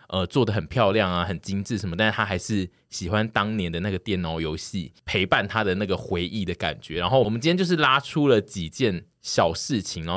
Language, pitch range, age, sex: Chinese, 85-110 Hz, 20-39, male